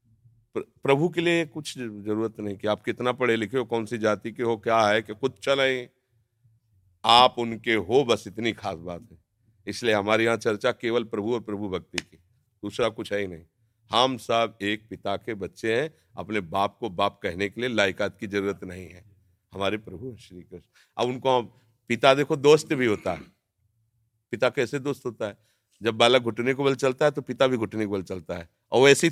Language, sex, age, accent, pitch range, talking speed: Hindi, male, 50-69, native, 105-140 Hz, 200 wpm